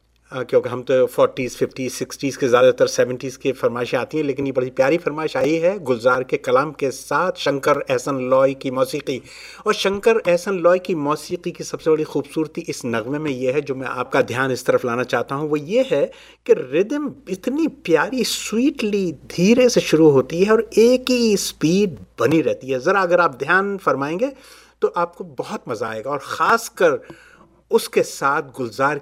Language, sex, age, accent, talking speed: English, male, 50-69, Indian, 160 wpm